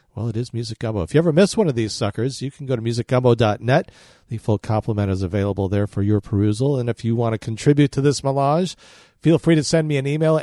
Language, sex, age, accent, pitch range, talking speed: English, male, 40-59, American, 105-140 Hz, 245 wpm